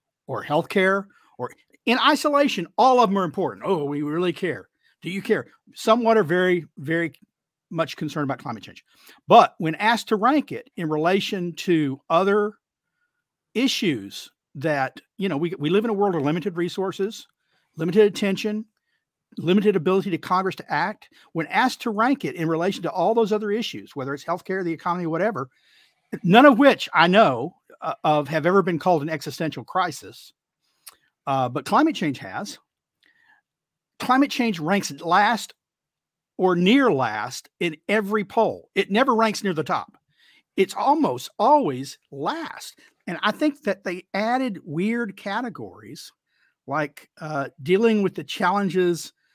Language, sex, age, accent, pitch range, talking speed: English, male, 50-69, American, 165-225 Hz, 155 wpm